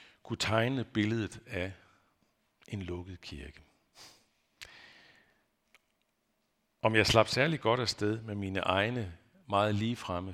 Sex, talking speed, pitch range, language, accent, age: male, 105 wpm, 95-125 Hz, Danish, native, 50-69